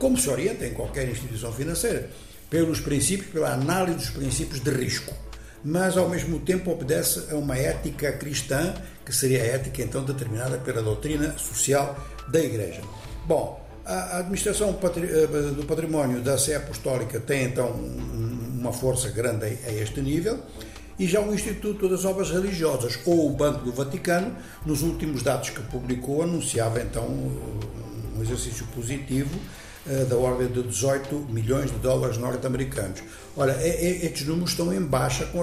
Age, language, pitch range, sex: 60-79, Portuguese, 125-155 Hz, male